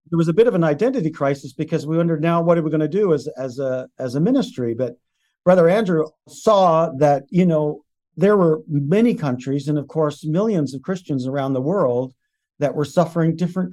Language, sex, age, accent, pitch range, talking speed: English, male, 50-69, American, 145-175 Hz, 210 wpm